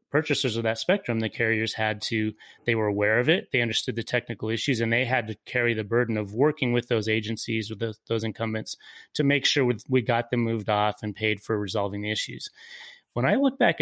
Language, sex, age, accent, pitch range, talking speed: English, male, 30-49, American, 115-135 Hz, 220 wpm